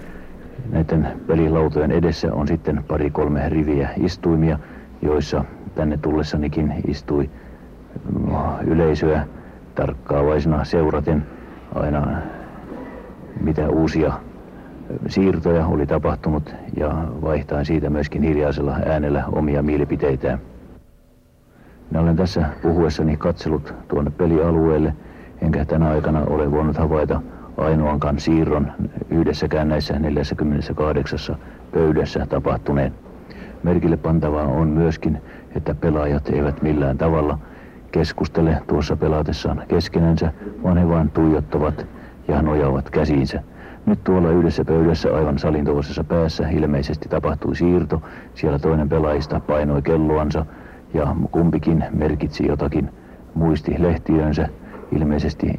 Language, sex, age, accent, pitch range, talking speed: Finnish, male, 60-79, native, 75-80 Hz, 100 wpm